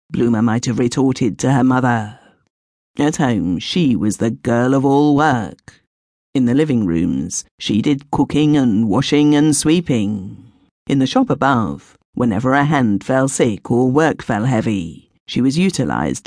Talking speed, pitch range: 160 wpm, 120-155 Hz